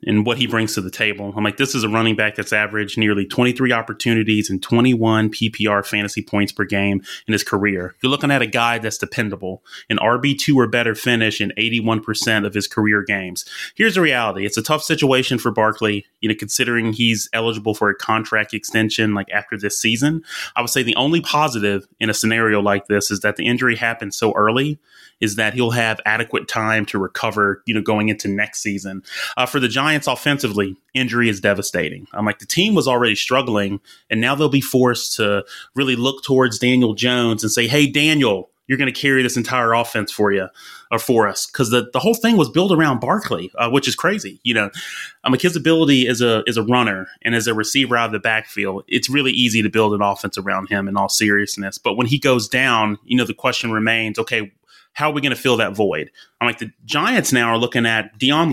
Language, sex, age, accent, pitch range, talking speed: English, male, 30-49, American, 105-125 Hz, 220 wpm